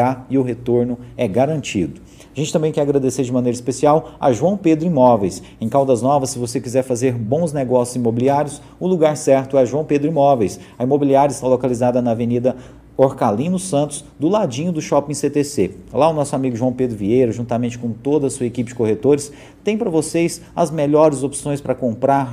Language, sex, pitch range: Portuguese, male, 120-145 Hz